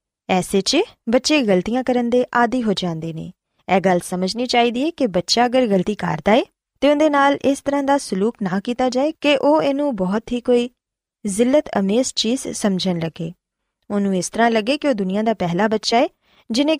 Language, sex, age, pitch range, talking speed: Punjabi, female, 20-39, 190-260 Hz, 195 wpm